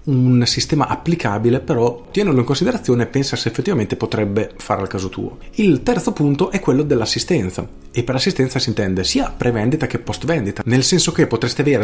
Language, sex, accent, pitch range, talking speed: Italian, male, native, 110-135 Hz, 190 wpm